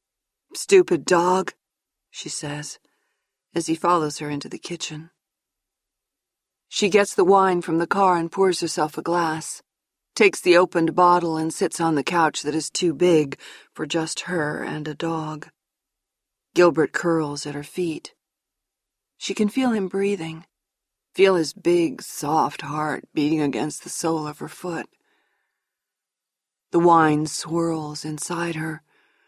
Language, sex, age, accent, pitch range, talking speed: English, female, 50-69, American, 160-185 Hz, 140 wpm